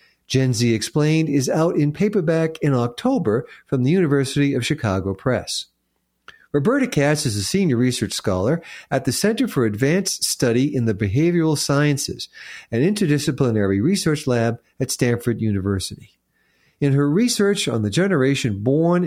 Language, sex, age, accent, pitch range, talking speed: English, male, 50-69, American, 115-170 Hz, 145 wpm